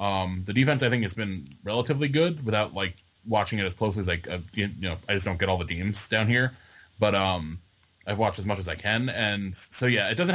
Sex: male